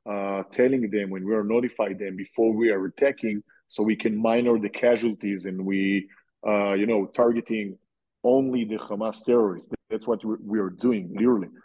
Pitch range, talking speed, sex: 105-135 Hz, 175 wpm, male